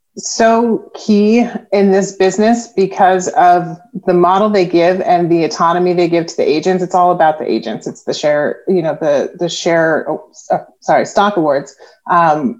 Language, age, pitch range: English, 30-49, 170-195 Hz